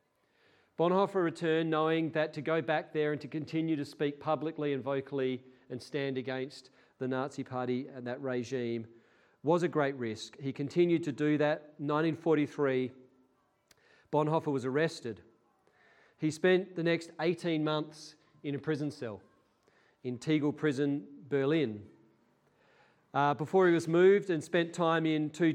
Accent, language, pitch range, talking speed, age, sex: Australian, English, 130-160 Hz, 145 wpm, 40-59, male